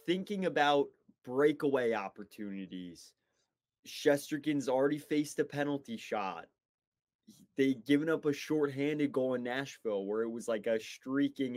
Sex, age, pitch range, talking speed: male, 20-39, 115-145 Hz, 125 wpm